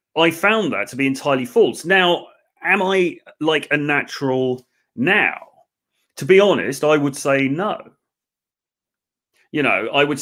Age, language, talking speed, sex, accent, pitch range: 30-49, English, 145 wpm, male, British, 120-150 Hz